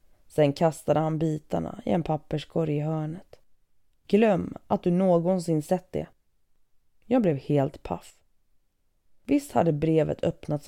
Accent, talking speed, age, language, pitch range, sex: native, 130 wpm, 20-39, Swedish, 145-165 Hz, female